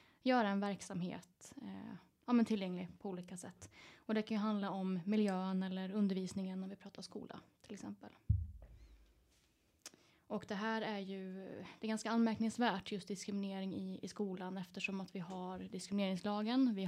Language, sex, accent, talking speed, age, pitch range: Swedish, female, native, 140 wpm, 20-39, 190-215 Hz